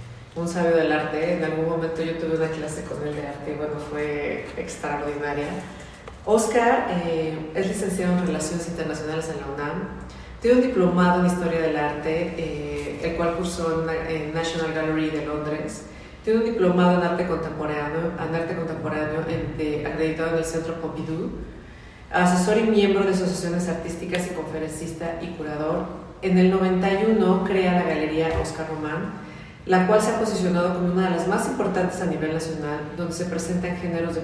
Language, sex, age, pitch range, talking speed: Spanish, female, 30-49, 160-185 Hz, 165 wpm